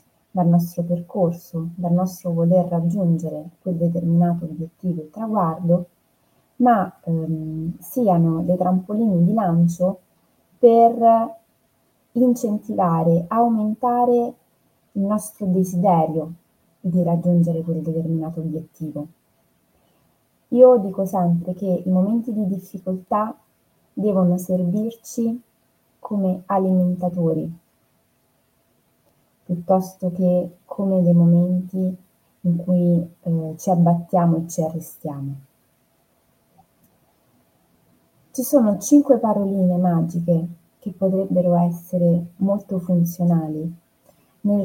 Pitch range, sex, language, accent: 170-195 Hz, female, Italian, native